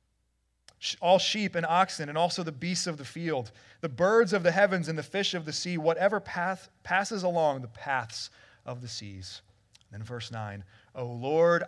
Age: 30-49